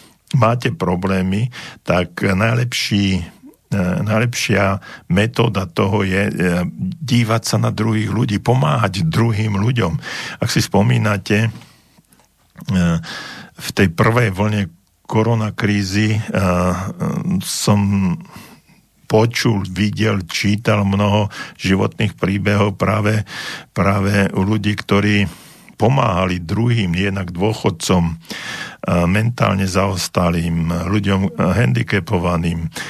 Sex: male